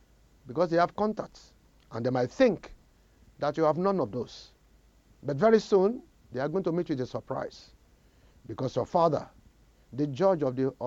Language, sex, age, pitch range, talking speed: English, male, 50-69, 115-185 Hz, 180 wpm